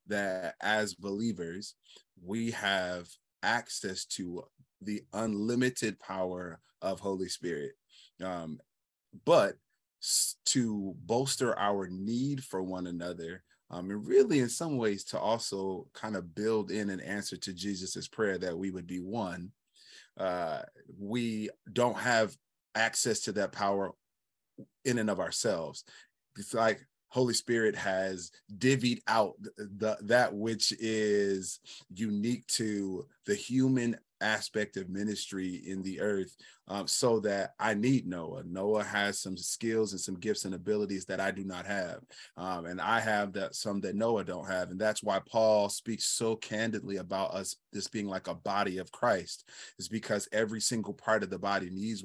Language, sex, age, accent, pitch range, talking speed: English, male, 30-49, American, 95-110 Hz, 150 wpm